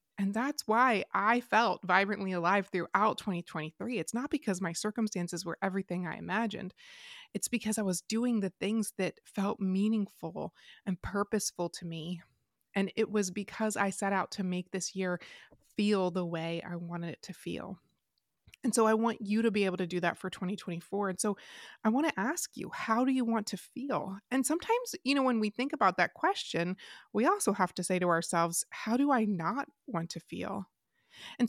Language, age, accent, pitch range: English, 30-49, American, 180-225 Hz